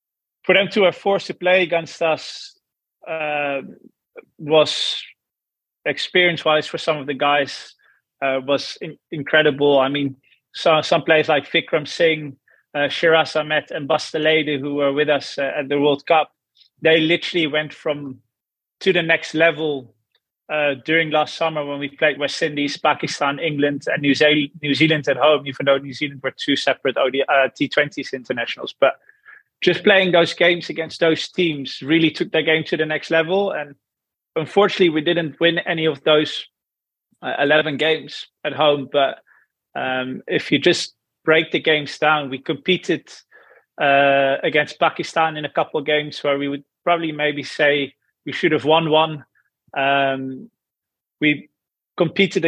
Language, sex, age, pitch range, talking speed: English, male, 30-49, 145-165 Hz, 155 wpm